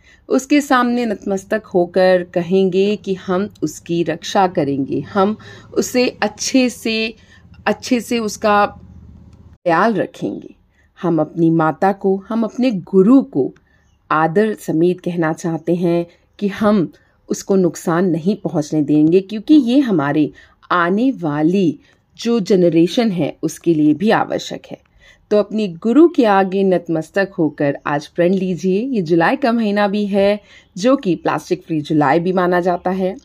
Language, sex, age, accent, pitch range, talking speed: Hindi, female, 40-59, native, 165-215 Hz, 140 wpm